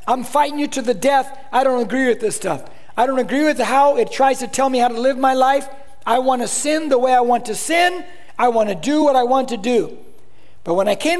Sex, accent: male, American